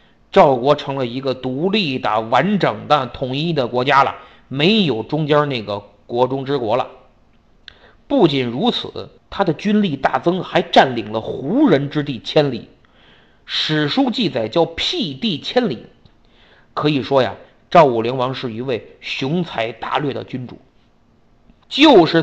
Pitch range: 120-170 Hz